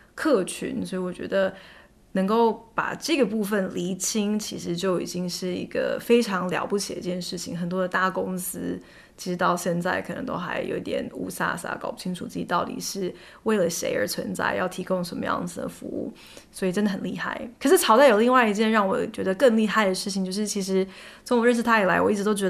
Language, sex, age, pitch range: Chinese, female, 20-39, 190-230 Hz